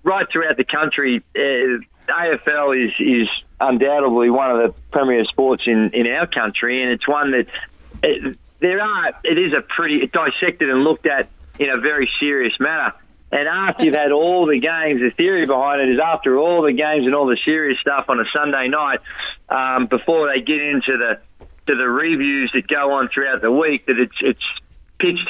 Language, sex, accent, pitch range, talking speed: English, male, Australian, 135-165 Hz, 205 wpm